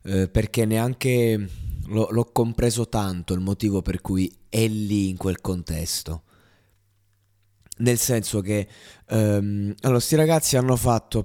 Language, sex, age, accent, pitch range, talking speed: Italian, male, 20-39, native, 100-125 Hz, 125 wpm